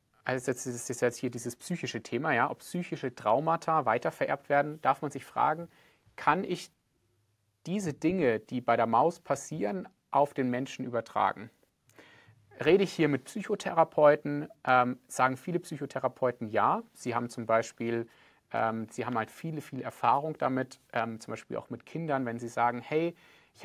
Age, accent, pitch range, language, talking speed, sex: 30-49, German, 120-150 Hz, German, 165 wpm, male